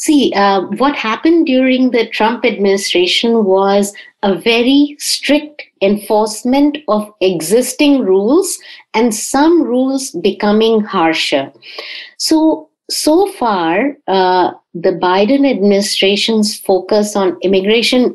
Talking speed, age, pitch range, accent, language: 105 wpm, 60-79, 200-265 Hz, Indian, English